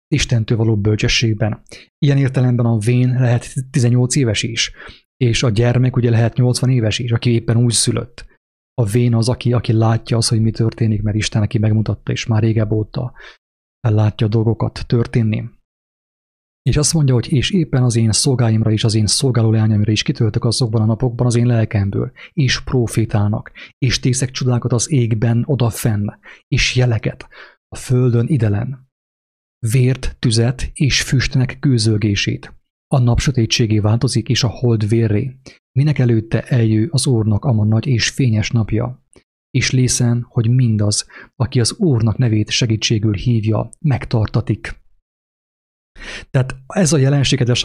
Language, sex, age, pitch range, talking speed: English, male, 30-49, 110-130 Hz, 145 wpm